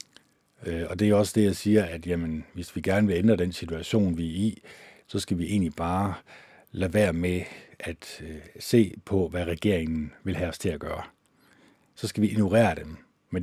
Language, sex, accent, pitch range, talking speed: Danish, male, native, 90-115 Hz, 200 wpm